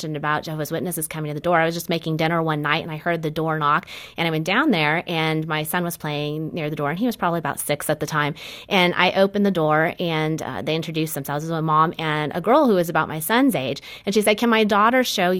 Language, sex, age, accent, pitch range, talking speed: English, female, 30-49, American, 155-195 Hz, 280 wpm